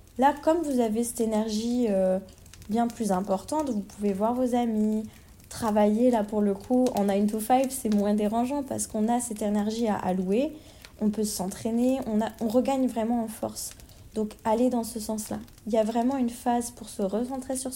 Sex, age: female, 20-39